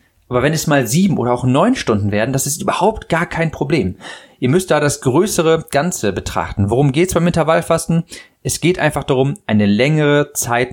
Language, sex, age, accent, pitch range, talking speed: German, male, 40-59, German, 115-155 Hz, 195 wpm